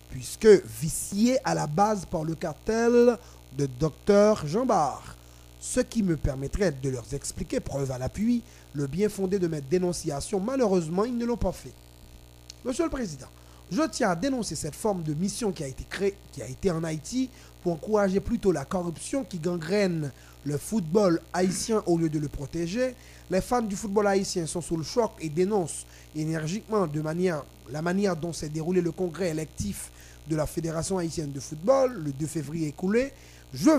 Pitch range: 150-210 Hz